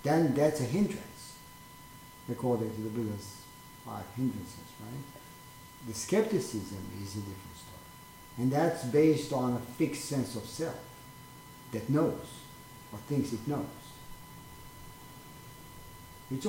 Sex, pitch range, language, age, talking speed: male, 115-155 Hz, English, 50-69, 120 wpm